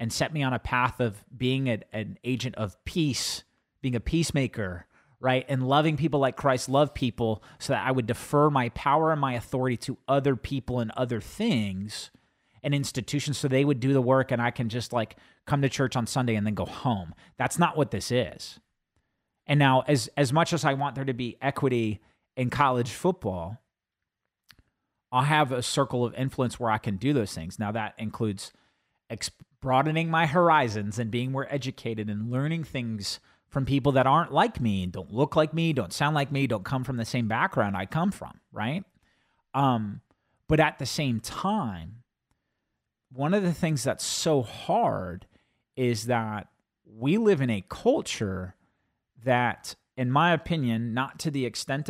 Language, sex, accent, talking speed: English, male, American, 185 wpm